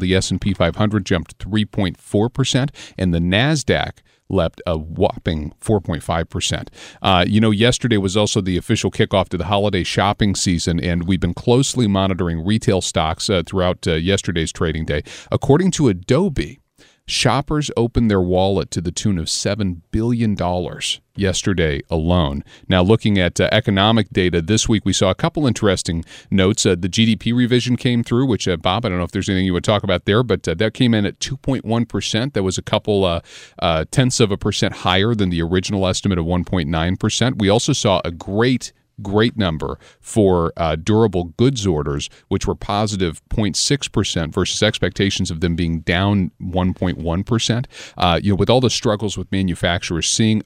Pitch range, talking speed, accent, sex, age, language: 90-110 Hz, 170 wpm, American, male, 40-59, English